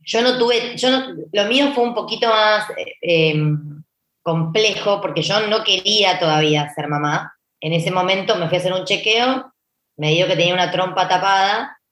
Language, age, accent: Spanish, 20-39, Argentinian